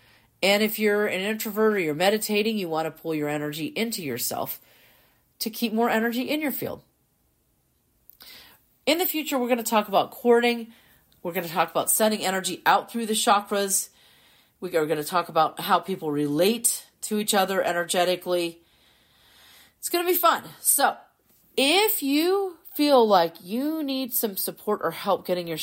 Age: 40-59